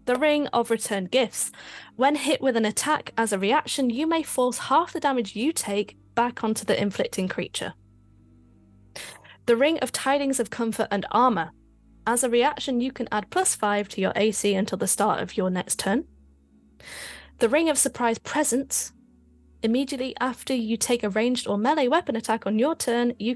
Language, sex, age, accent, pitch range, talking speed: English, female, 10-29, British, 190-255 Hz, 180 wpm